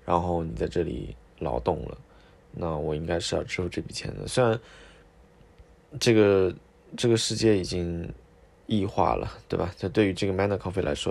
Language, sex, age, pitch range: Chinese, male, 20-39, 85-100 Hz